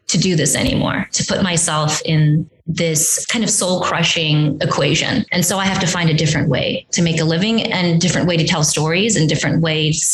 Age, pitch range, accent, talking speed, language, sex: 20-39, 165-250 Hz, American, 215 wpm, English, female